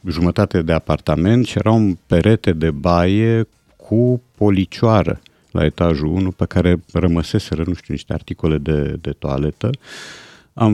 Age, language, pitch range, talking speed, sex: 50-69, Romanian, 75-100 Hz, 135 wpm, male